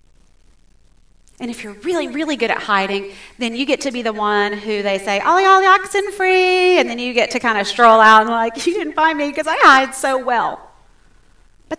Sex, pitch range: female, 185-270 Hz